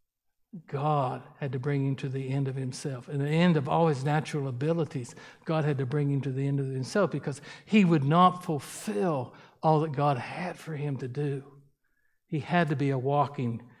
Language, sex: English, male